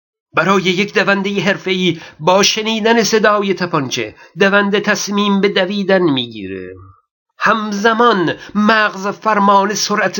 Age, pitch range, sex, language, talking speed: 50-69, 180-225 Hz, male, Persian, 100 wpm